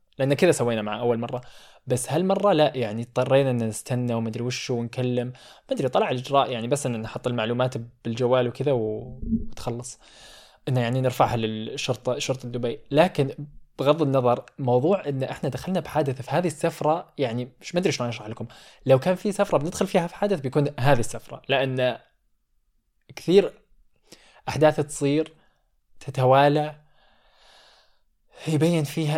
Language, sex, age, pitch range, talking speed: Arabic, male, 20-39, 120-150 Hz, 145 wpm